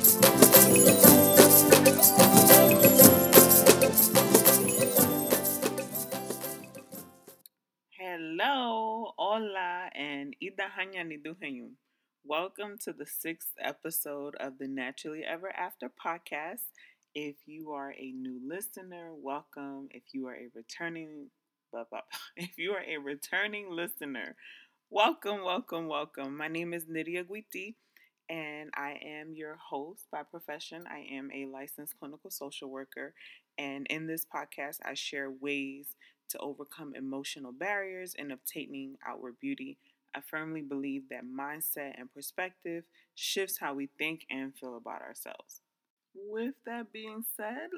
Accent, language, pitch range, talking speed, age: American, English, 140-200 Hz, 115 wpm, 30-49